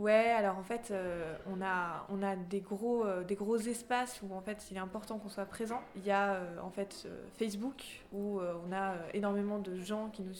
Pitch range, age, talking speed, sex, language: 185-215 Hz, 20-39, 240 wpm, female, French